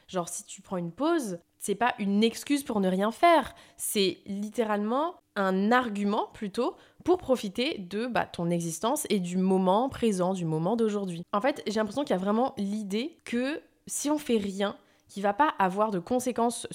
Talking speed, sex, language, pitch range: 185 wpm, female, French, 180-230 Hz